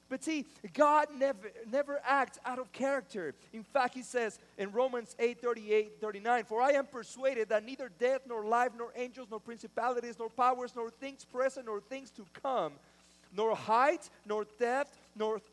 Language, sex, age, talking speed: English, male, 40-59, 175 wpm